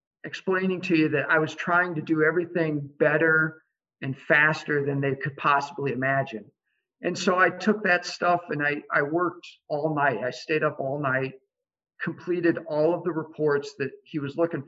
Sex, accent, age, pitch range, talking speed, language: male, American, 50-69, 140-170 Hz, 180 wpm, English